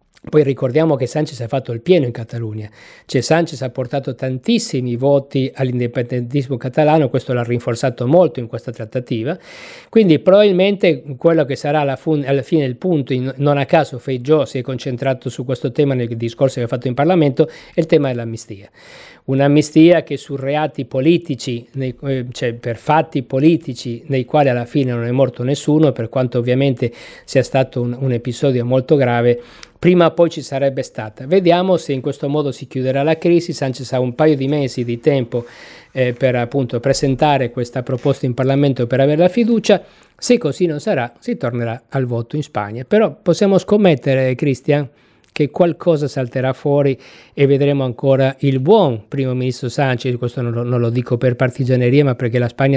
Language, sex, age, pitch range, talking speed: Italian, male, 50-69, 125-150 Hz, 175 wpm